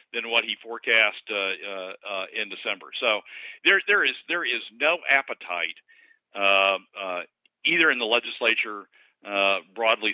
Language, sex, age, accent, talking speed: English, male, 50-69, American, 150 wpm